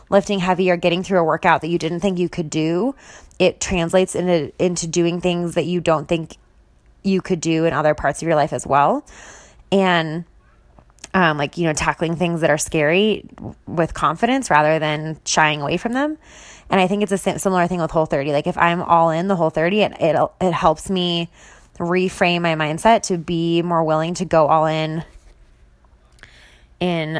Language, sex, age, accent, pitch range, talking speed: English, female, 20-39, American, 155-185 Hz, 190 wpm